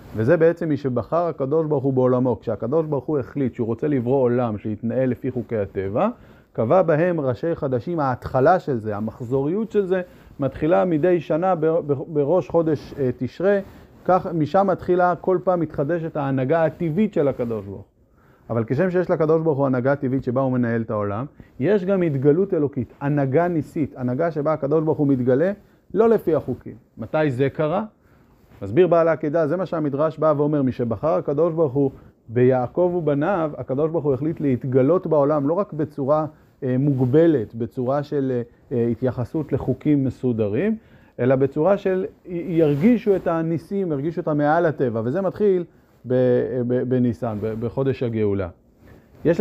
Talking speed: 155 wpm